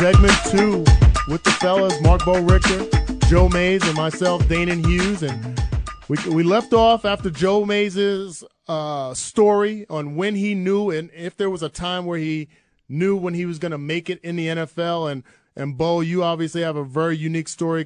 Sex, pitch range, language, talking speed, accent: male, 150-180 Hz, English, 190 wpm, American